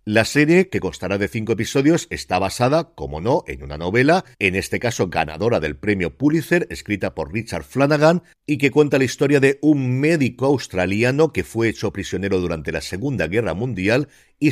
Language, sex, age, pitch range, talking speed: Spanish, male, 50-69, 95-135 Hz, 180 wpm